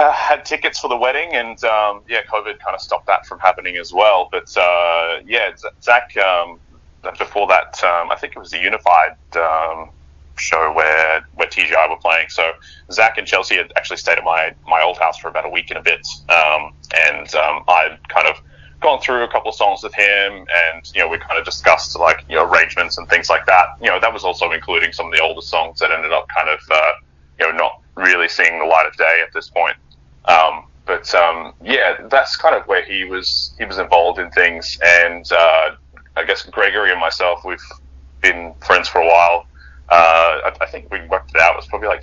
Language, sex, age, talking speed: English, male, 20-39, 220 wpm